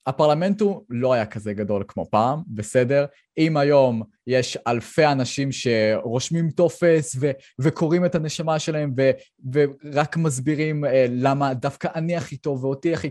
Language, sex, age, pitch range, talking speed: Hebrew, male, 20-39, 110-150 Hz, 140 wpm